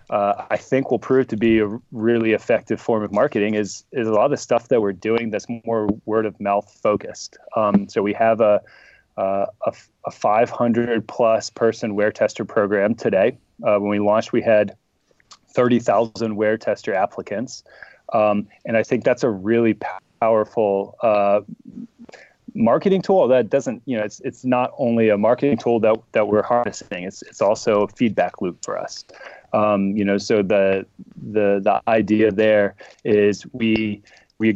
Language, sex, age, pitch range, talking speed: English, male, 30-49, 105-120 Hz, 175 wpm